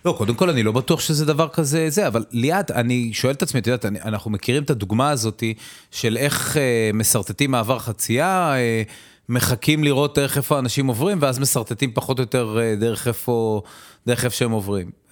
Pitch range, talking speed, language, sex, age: 115-165 Hz, 190 wpm, Hebrew, male, 30-49